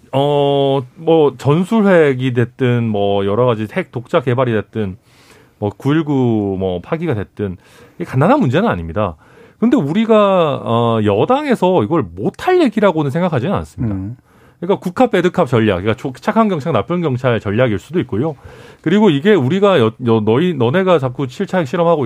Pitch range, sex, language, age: 115-195 Hz, male, Korean, 40-59